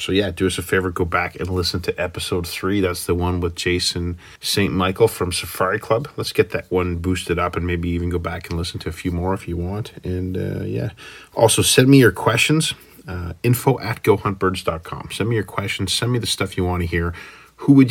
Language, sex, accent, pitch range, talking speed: English, male, American, 90-100 Hz, 230 wpm